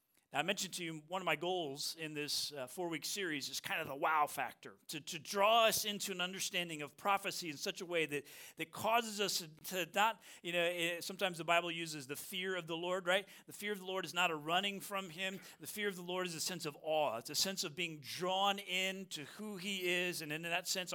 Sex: male